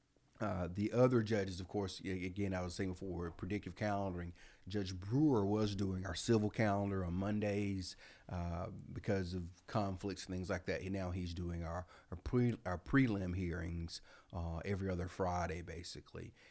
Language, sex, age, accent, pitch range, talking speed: English, male, 30-49, American, 90-100 Hz, 165 wpm